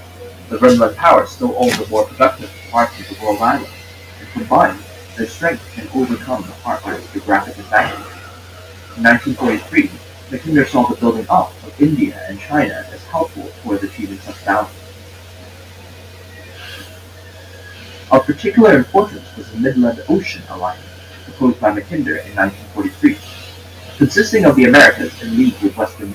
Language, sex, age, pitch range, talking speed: English, male, 30-49, 90-120 Hz, 150 wpm